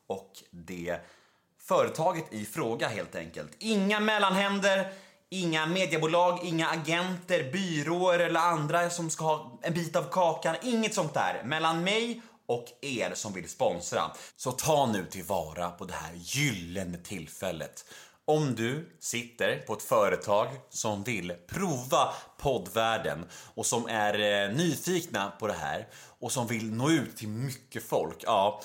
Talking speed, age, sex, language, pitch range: 140 wpm, 30-49, male, Swedish, 110-175 Hz